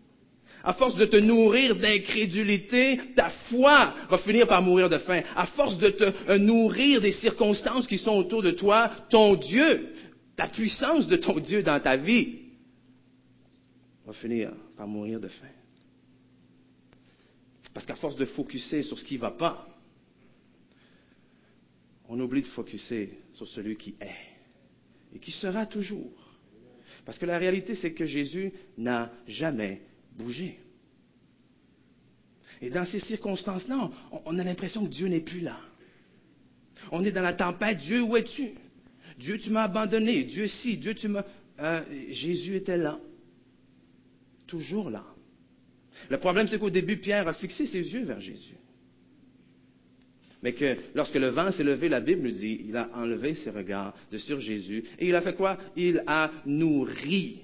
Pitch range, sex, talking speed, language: 130-215 Hz, male, 155 wpm, French